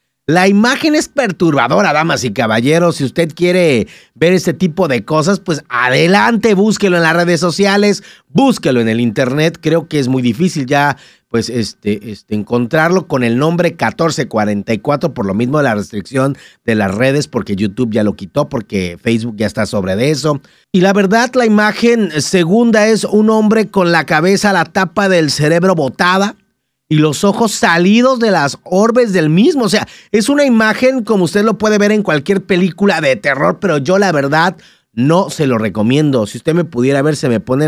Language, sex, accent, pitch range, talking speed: Spanish, male, Mexican, 130-200 Hz, 190 wpm